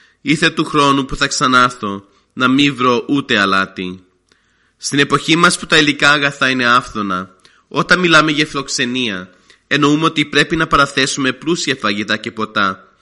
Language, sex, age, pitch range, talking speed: Greek, male, 30-49, 110-150 Hz, 150 wpm